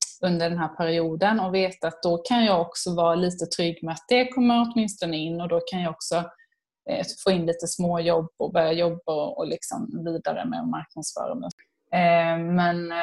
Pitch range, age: 170-200 Hz, 20-39